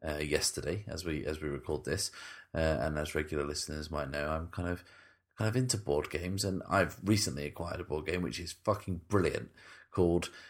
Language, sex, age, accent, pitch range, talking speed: English, male, 30-49, British, 80-110 Hz, 200 wpm